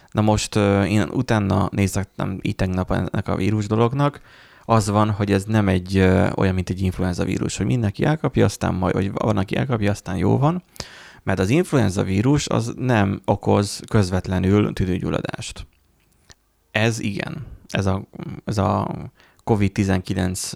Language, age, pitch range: Hungarian, 30-49, 95-115 Hz